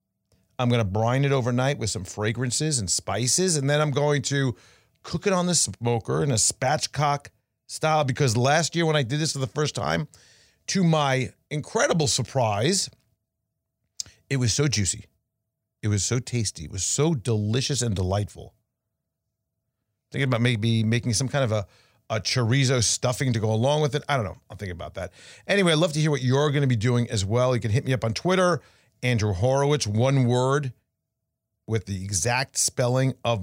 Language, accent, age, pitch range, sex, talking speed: English, American, 40-59, 110-140 Hz, male, 190 wpm